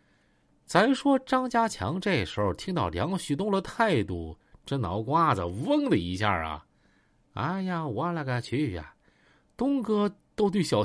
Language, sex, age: Chinese, male, 50-69